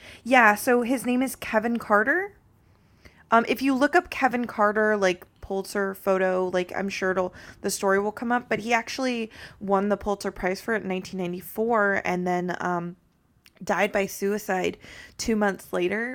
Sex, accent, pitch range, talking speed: female, American, 185-210 Hz, 170 wpm